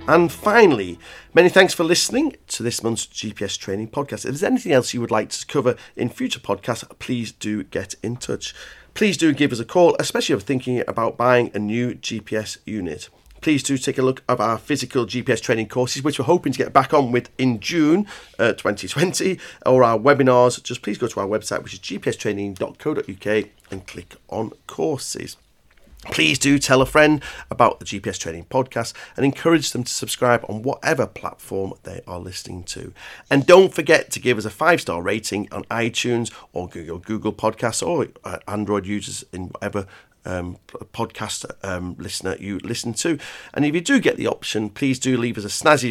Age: 40-59